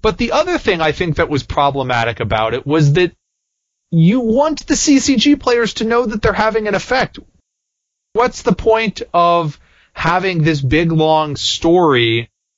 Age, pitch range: 30-49, 125-165 Hz